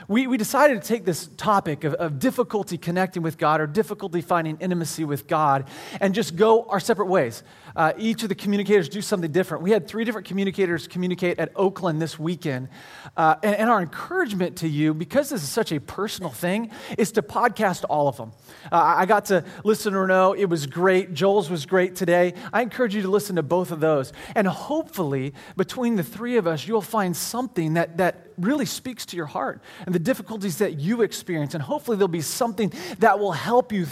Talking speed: 210 wpm